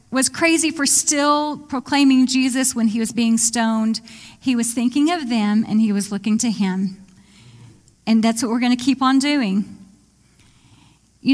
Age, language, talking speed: 40-59, English, 165 wpm